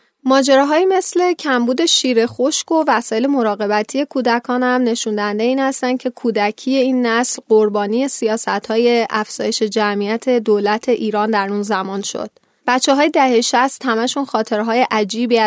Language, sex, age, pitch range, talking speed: Persian, female, 10-29, 215-255 Hz, 135 wpm